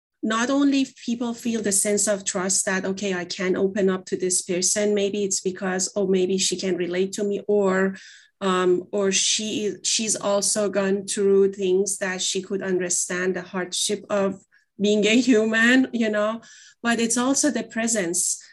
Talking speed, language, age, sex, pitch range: 170 wpm, English, 30-49, female, 195-230 Hz